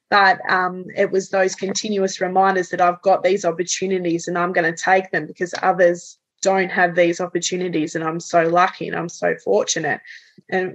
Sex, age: female, 20-39